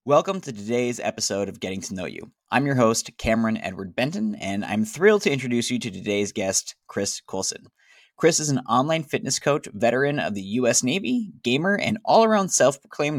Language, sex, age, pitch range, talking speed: English, male, 20-39, 105-140 Hz, 185 wpm